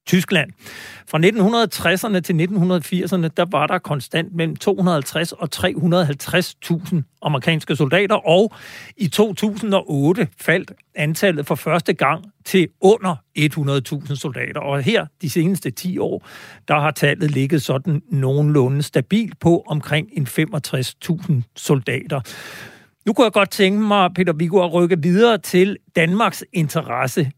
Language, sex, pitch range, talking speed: Danish, male, 150-185 Hz, 125 wpm